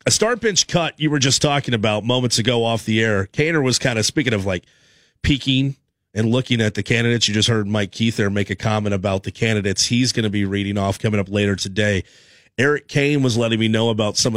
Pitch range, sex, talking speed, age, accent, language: 100-125 Hz, male, 240 wpm, 30-49, American, English